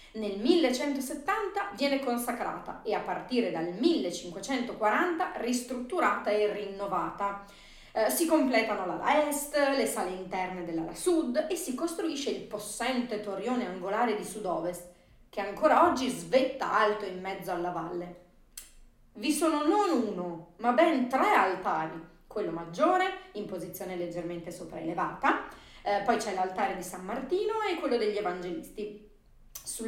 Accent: native